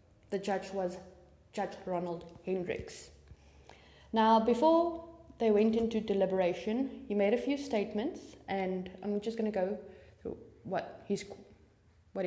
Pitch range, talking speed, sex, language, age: 175-225 Hz, 125 wpm, female, English, 20-39